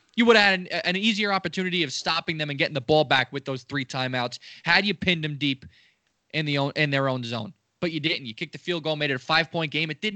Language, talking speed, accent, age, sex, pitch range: English, 280 wpm, American, 20-39, male, 150-200 Hz